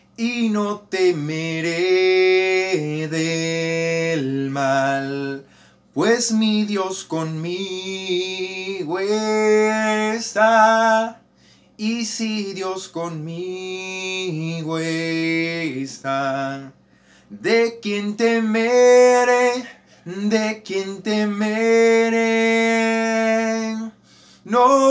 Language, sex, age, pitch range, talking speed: English, male, 30-49, 200-275 Hz, 55 wpm